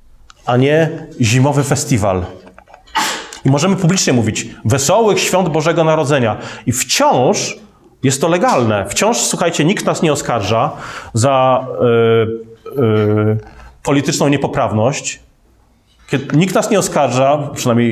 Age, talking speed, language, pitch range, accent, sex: 30-49, 115 wpm, Polish, 120-155 Hz, native, male